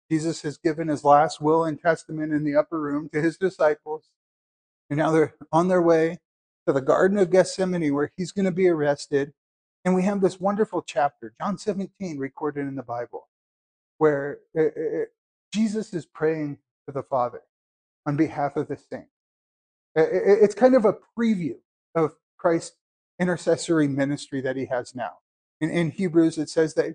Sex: male